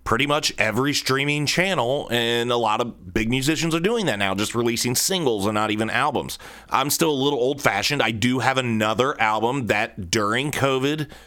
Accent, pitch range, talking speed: American, 105-130 Hz, 190 wpm